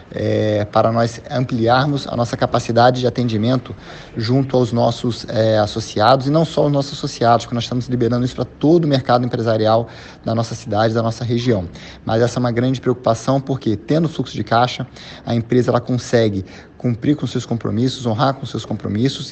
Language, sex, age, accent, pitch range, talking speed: Portuguese, male, 20-39, Brazilian, 115-130 Hz, 185 wpm